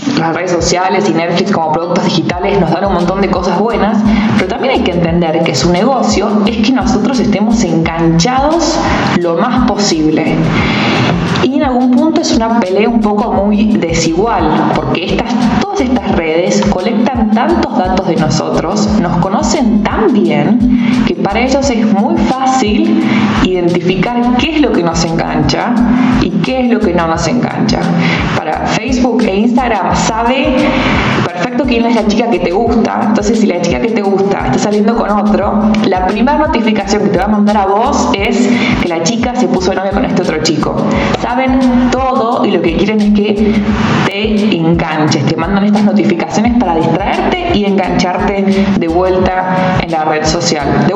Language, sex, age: Spanish, female, 20-39